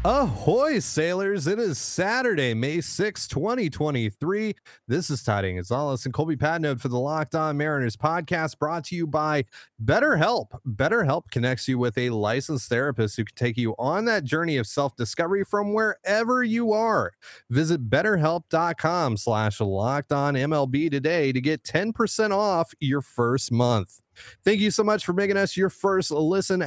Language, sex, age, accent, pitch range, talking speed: English, male, 30-49, American, 115-175 Hz, 155 wpm